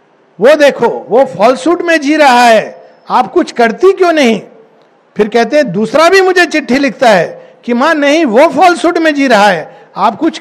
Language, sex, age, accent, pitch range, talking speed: Hindi, male, 60-79, native, 210-310 Hz, 190 wpm